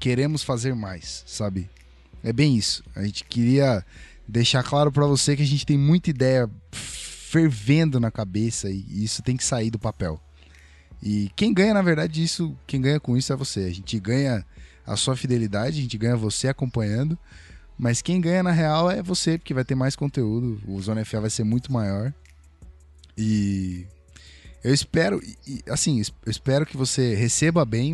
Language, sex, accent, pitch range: Portuguese, male, Brazilian, 95-140 Hz